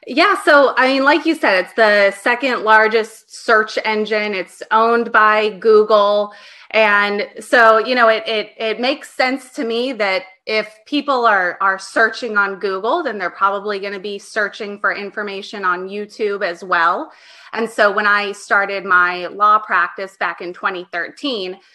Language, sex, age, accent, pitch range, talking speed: English, female, 20-39, American, 195-225 Hz, 165 wpm